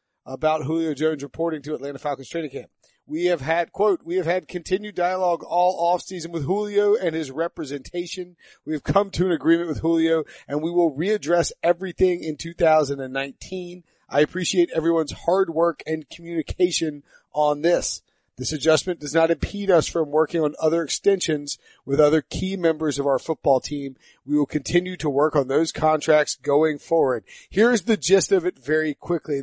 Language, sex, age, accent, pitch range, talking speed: English, male, 40-59, American, 145-180 Hz, 175 wpm